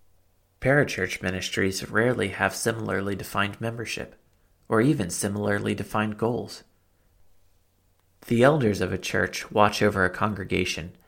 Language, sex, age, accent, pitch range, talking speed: English, male, 30-49, American, 90-105 Hz, 115 wpm